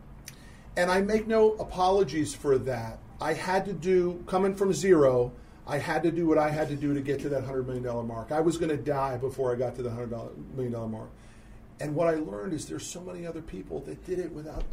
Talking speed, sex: 230 wpm, male